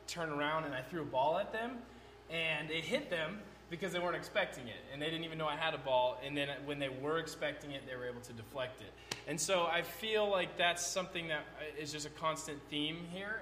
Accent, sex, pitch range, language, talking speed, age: American, male, 145-180 Hz, English, 240 wpm, 20-39